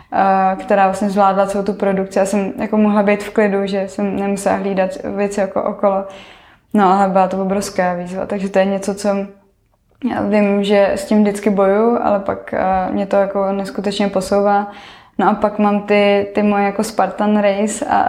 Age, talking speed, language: 20-39, 185 wpm, Slovak